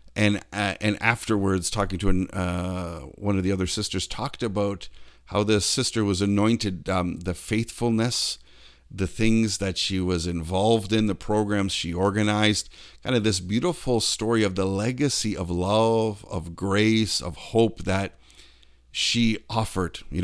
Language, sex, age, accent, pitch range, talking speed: English, male, 50-69, American, 90-110 Hz, 155 wpm